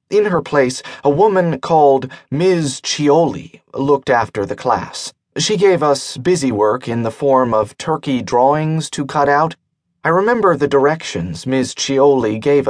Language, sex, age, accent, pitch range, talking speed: English, male, 40-59, American, 130-170 Hz, 155 wpm